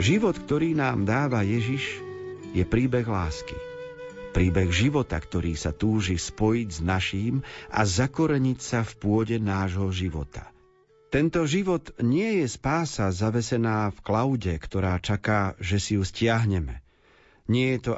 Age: 50-69